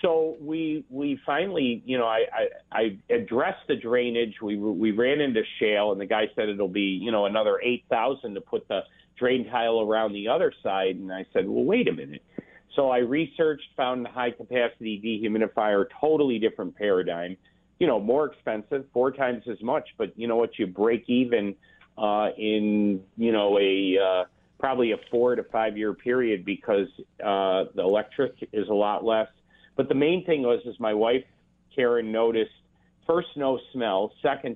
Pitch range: 100-125 Hz